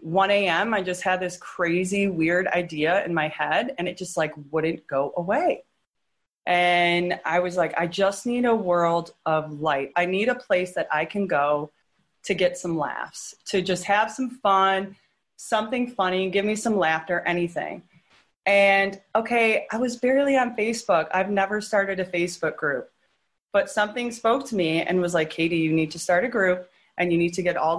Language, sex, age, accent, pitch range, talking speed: English, female, 30-49, American, 175-215 Hz, 190 wpm